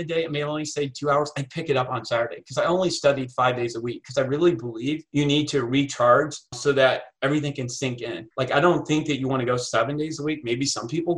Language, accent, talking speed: English, American, 275 wpm